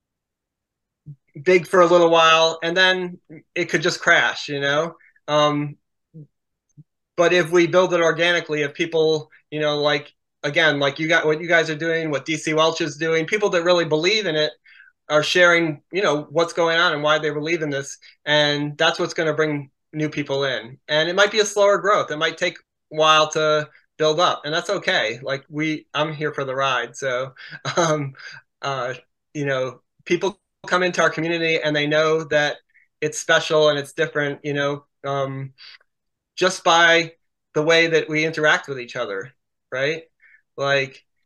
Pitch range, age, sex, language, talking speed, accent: 145-165 Hz, 20-39, male, English, 185 wpm, American